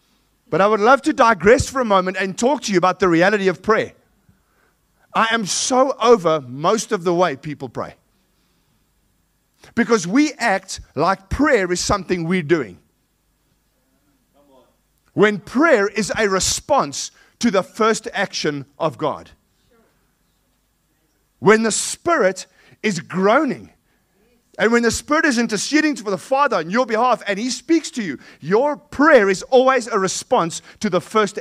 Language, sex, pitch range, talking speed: English, male, 185-255 Hz, 150 wpm